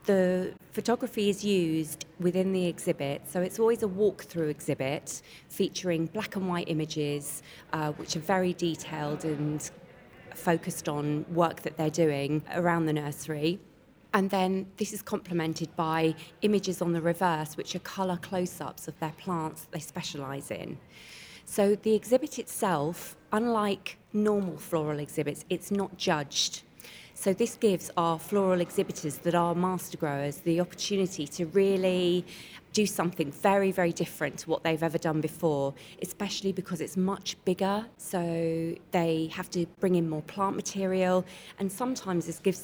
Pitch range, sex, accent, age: 160-190 Hz, female, British, 20-39